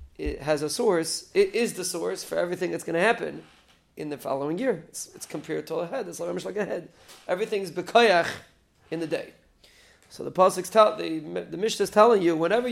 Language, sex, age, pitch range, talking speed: English, male, 30-49, 175-215 Hz, 200 wpm